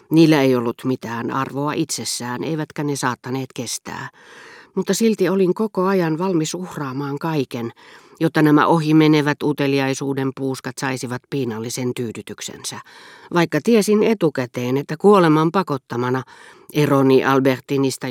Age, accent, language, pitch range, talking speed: 40-59, native, Finnish, 130-165 Hz, 115 wpm